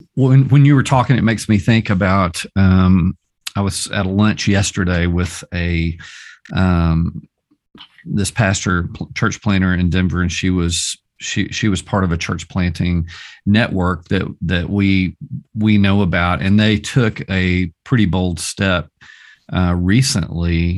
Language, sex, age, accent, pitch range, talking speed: English, male, 40-59, American, 85-100 Hz, 155 wpm